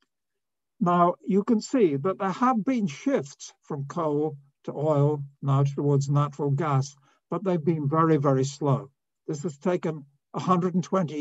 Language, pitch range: Turkish, 140-195 Hz